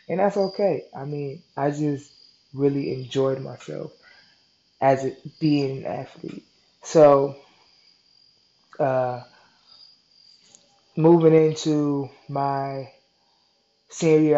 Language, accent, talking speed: English, American, 90 wpm